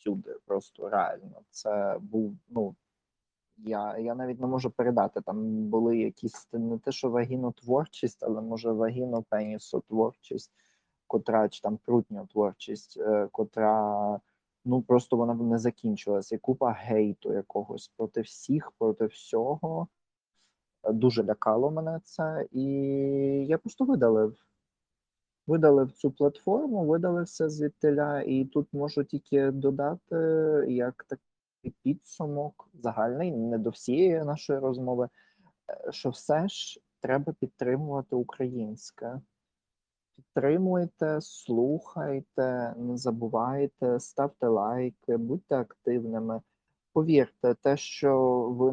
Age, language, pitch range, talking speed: 20-39, Ukrainian, 115-145 Hz, 105 wpm